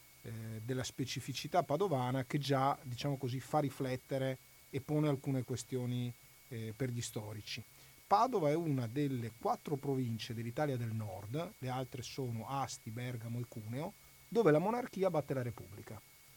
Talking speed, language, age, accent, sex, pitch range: 140 wpm, Italian, 40-59, native, male, 120-150 Hz